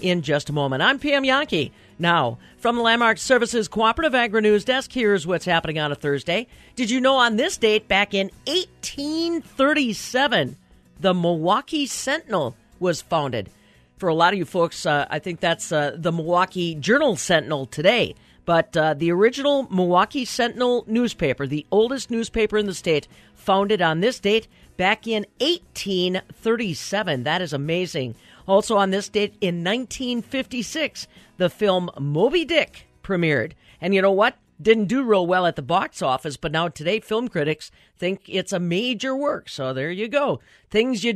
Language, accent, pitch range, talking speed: English, American, 175-240 Hz, 165 wpm